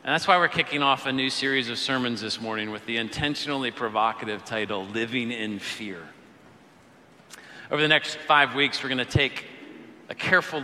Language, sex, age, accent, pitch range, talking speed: English, male, 40-59, American, 120-155 Hz, 180 wpm